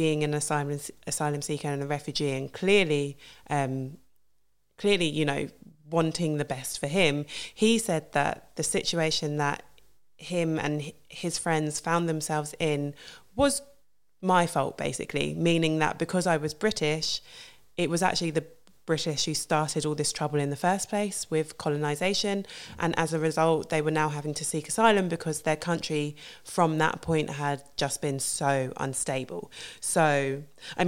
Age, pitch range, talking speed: 20-39, 145-170 Hz, 160 wpm